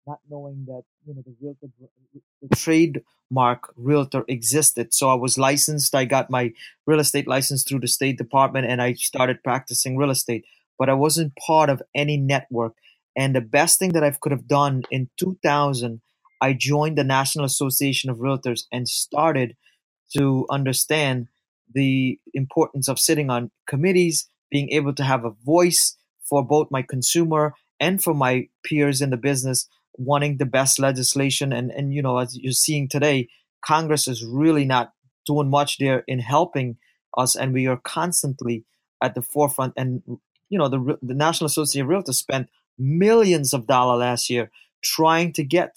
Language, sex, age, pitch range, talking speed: English, male, 20-39, 130-150 Hz, 170 wpm